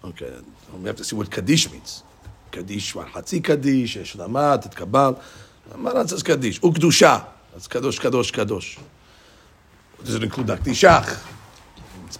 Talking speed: 140 wpm